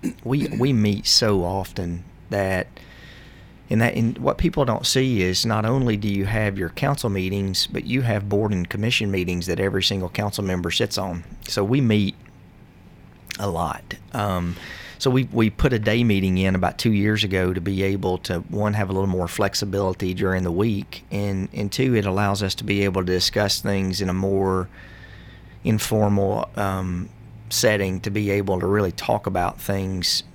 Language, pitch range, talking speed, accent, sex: English, 95-110 Hz, 185 wpm, American, male